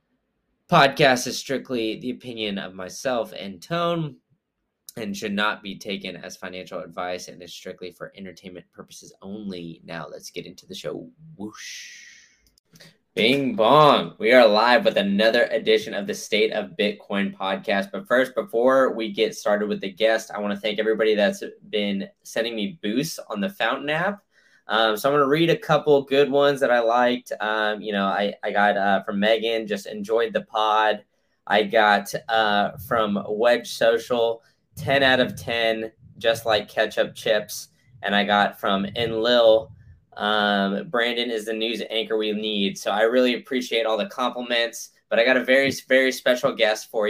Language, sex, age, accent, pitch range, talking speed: English, male, 10-29, American, 105-130 Hz, 175 wpm